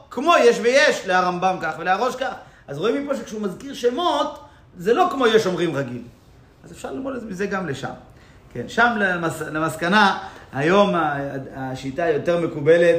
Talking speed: 160 wpm